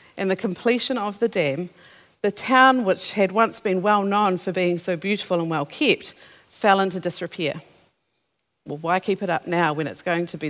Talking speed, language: 190 wpm, English